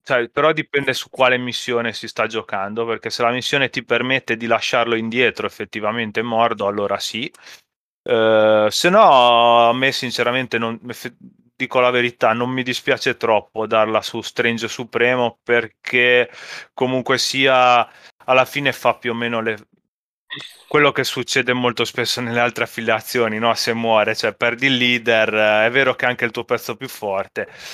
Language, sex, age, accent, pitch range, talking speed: Italian, male, 20-39, native, 110-125 Hz, 150 wpm